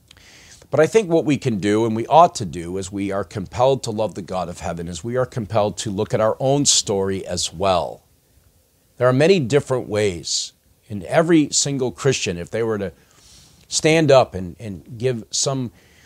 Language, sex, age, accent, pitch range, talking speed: English, male, 50-69, American, 100-135 Hz, 200 wpm